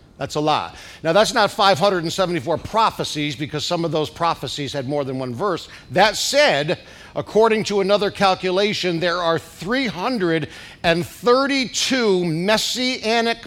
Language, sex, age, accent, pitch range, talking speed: English, male, 50-69, American, 145-205 Hz, 125 wpm